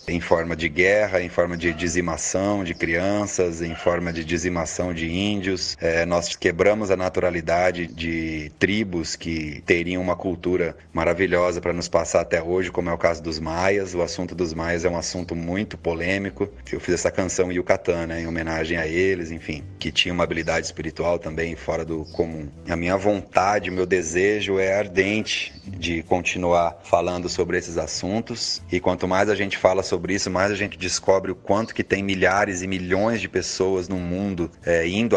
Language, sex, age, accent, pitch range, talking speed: Portuguese, male, 30-49, Brazilian, 85-95 Hz, 185 wpm